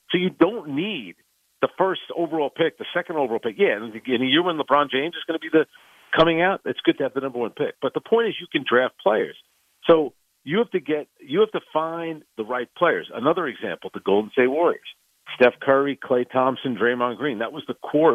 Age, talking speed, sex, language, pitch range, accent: 50-69, 230 wpm, male, English, 125-185 Hz, American